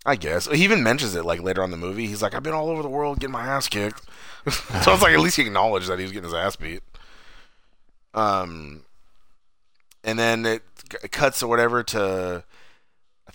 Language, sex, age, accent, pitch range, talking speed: English, male, 30-49, American, 90-110 Hz, 215 wpm